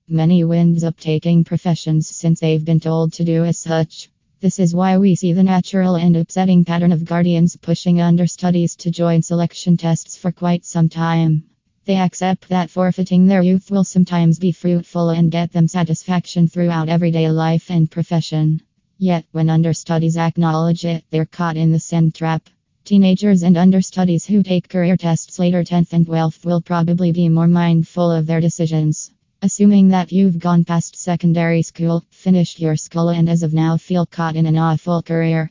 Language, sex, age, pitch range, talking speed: English, female, 20-39, 165-180 Hz, 175 wpm